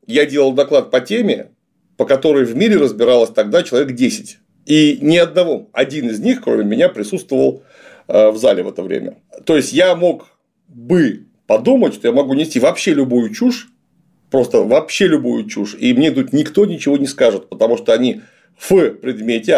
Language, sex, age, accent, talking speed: Russian, male, 40-59, native, 170 wpm